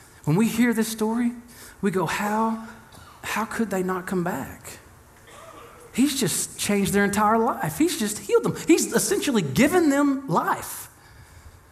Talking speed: 150 wpm